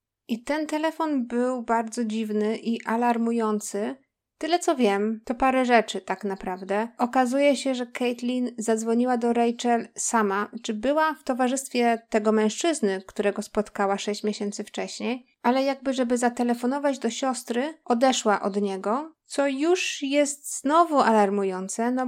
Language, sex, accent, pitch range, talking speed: Polish, female, native, 220-265 Hz, 135 wpm